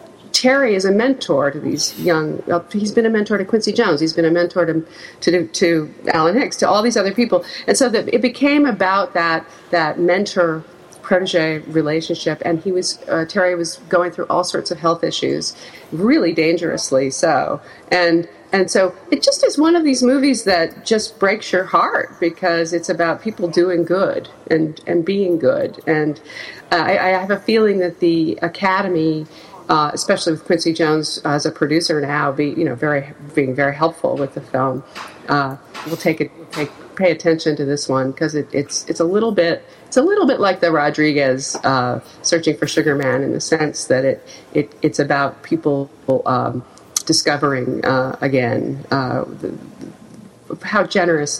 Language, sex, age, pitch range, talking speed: English, female, 50-69, 155-190 Hz, 185 wpm